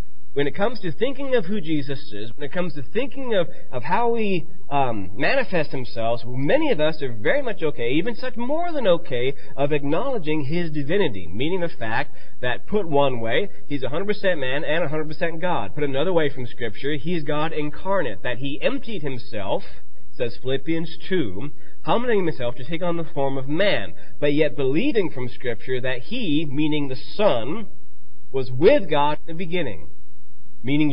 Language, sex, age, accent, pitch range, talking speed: English, male, 30-49, American, 130-180 Hz, 175 wpm